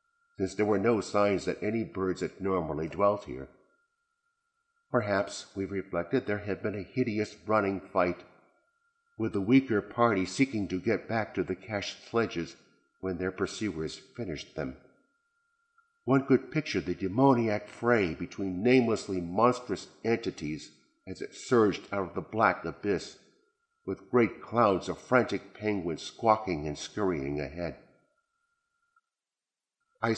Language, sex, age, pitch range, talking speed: English, male, 50-69, 95-135 Hz, 135 wpm